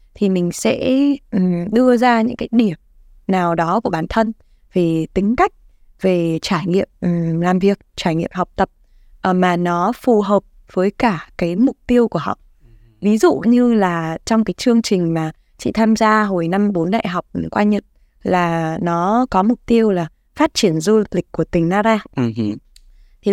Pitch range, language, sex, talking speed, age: 175-240 Hz, Vietnamese, female, 175 wpm, 20-39